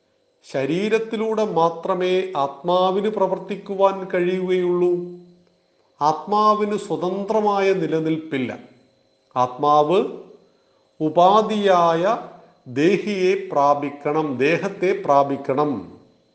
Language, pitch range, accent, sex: Malayalam, 145-195 Hz, native, male